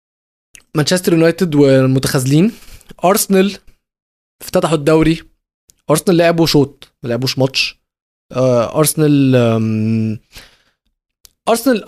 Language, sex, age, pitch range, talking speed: Arabic, male, 20-39, 130-160 Hz, 70 wpm